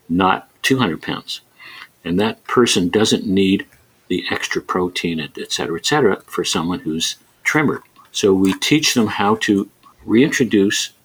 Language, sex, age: English, male, 50-69